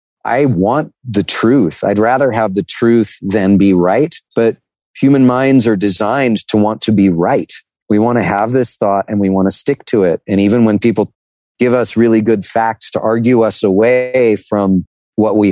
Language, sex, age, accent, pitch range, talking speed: English, male, 30-49, American, 105-140 Hz, 195 wpm